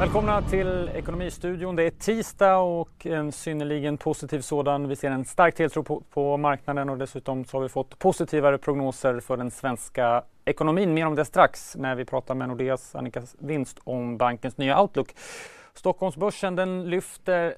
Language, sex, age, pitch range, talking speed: English, male, 30-49, 125-150 Hz, 165 wpm